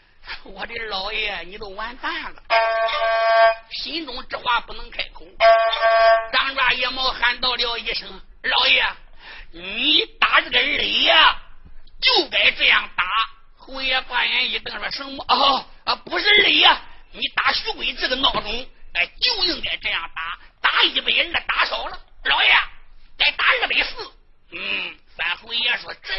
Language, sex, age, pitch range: Chinese, male, 50-69, 215-275 Hz